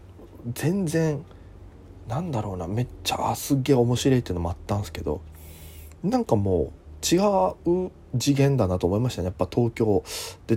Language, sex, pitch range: Japanese, male, 90-140 Hz